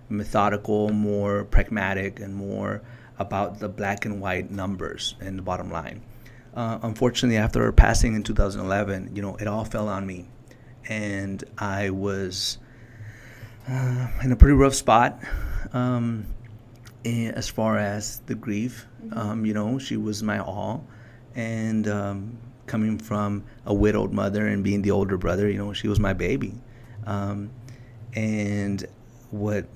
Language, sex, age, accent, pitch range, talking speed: English, male, 30-49, American, 100-115 Hz, 145 wpm